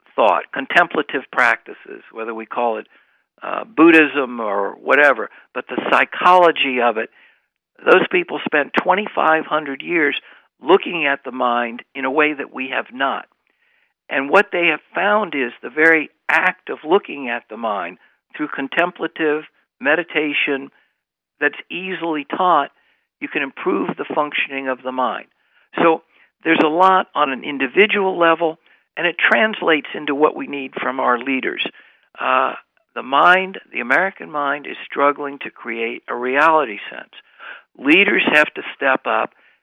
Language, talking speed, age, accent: English, 145 wpm, 60-79, American